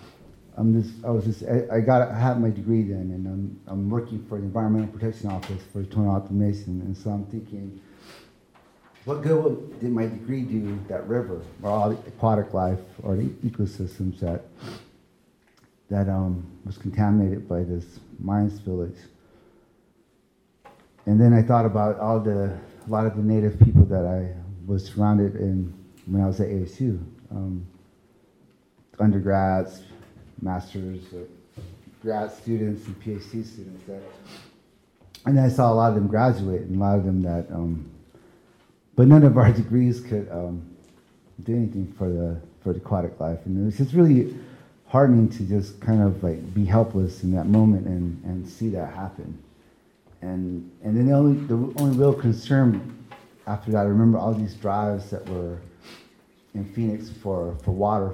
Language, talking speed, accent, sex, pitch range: English, 165 wpm, American, male, 95-115 Hz